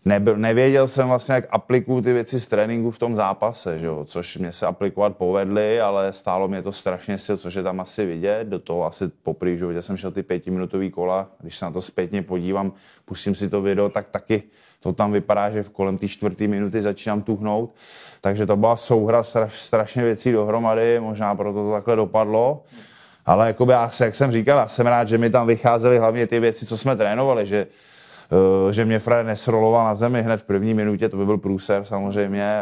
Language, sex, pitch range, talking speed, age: Czech, male, 95-115 Hz, 200 wpm, 20-39